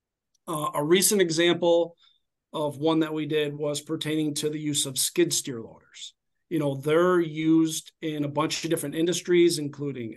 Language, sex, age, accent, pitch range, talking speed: English, male, 40-59, American, 150-175 Hz, 170 wpm